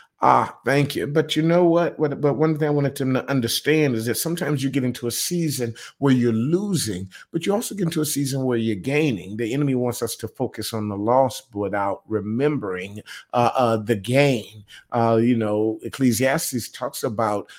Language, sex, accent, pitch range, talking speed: English, male, American, 115-155 Hz, 195 wpm